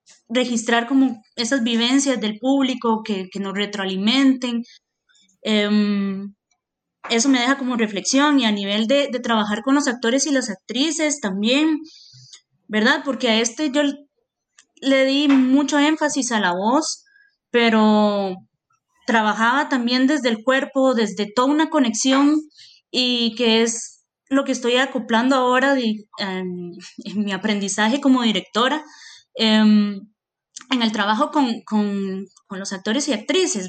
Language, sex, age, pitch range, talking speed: Spanish, female, 20-39, 210-270 Hz, 140 wpm